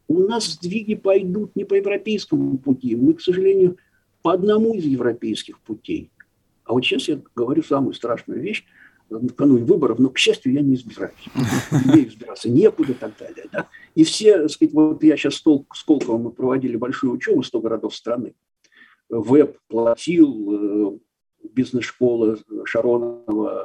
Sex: male